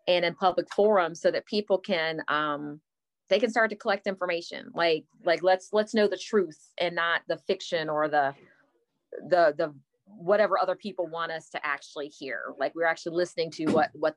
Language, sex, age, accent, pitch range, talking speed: English, female, 30-49, American, 170-200 Hz, 190 wpm